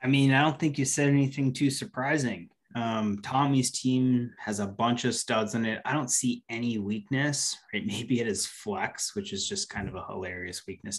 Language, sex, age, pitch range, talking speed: English, male, 20-39, 110-140 Hz, 210 wpm